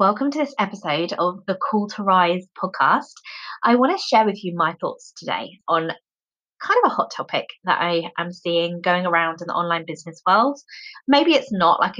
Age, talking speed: 20-39, 200 wpm